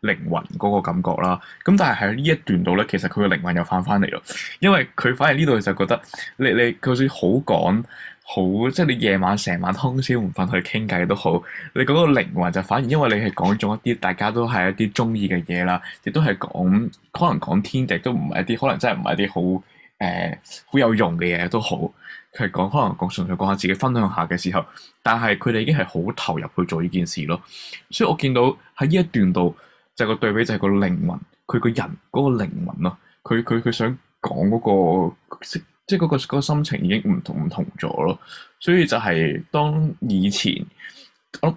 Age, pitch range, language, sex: 20-39, 95-150 Hz, Chinese, male